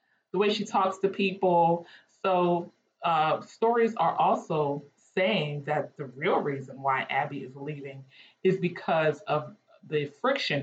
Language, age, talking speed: English, 30-49, 140 wpm